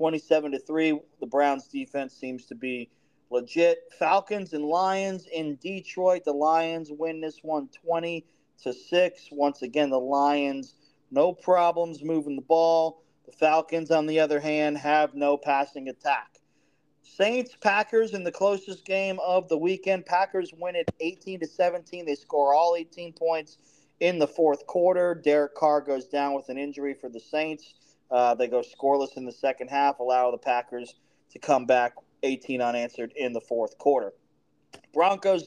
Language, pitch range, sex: English, 145-170 Hz, male